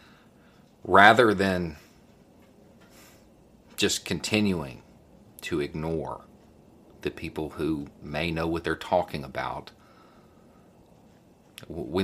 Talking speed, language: 80 wpm, English